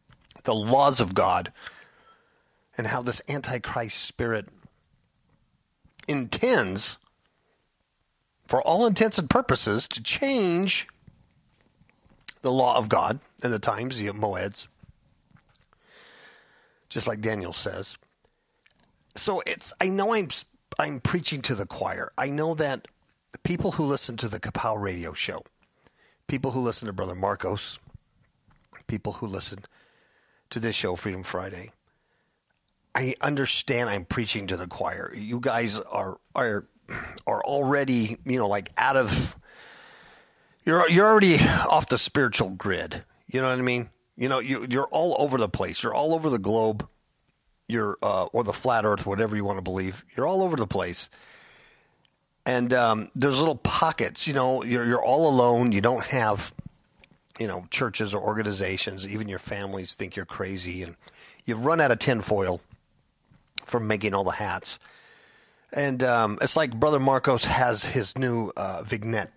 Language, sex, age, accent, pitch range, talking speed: English, male, 40-59, American, 105-140 Hz, 145 wpm